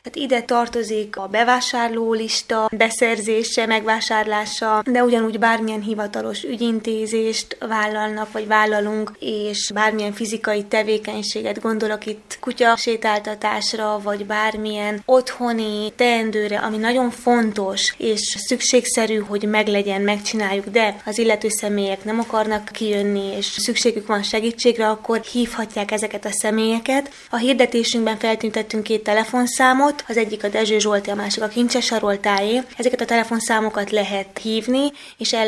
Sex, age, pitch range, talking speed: female, 20-39, 210-235 Hz, 125 wpm